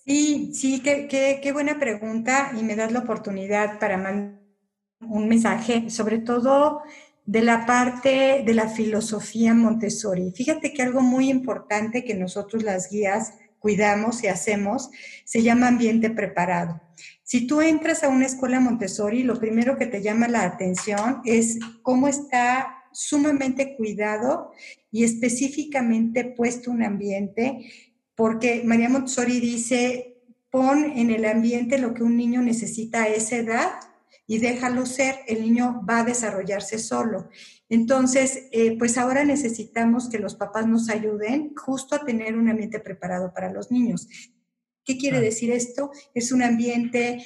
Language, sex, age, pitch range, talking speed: Spanish, female, 40-59, 215-260 Hz, 145 wpm